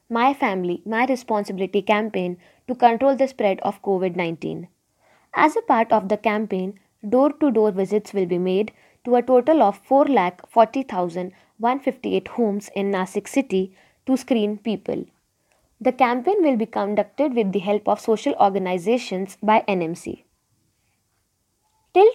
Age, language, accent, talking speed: 20-39, Marathi, native, 130 wpm